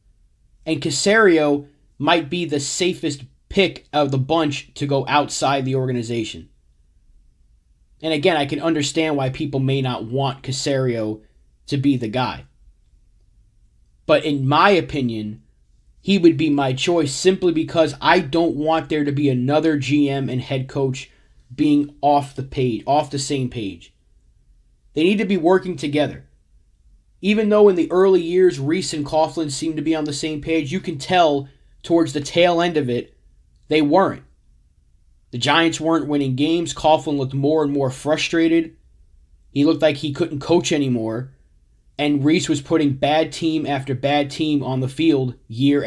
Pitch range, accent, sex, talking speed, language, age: 125-160 Hz, American, male, 160 wpm, English, 30-49